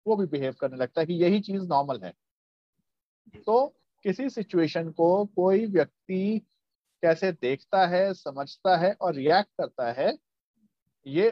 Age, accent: 50-69, native